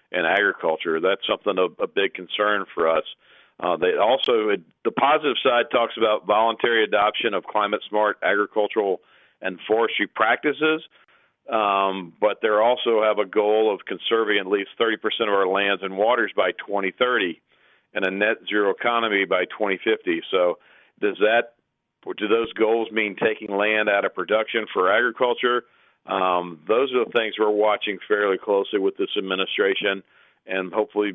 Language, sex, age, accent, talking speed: English, male, 50-69, American, 155 wpm